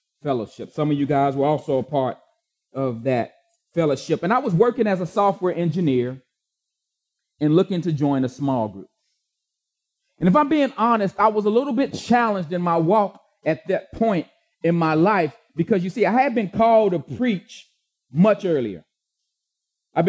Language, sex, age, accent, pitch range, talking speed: English, male, 30-49, American, 160-215 Hz, 175 wpm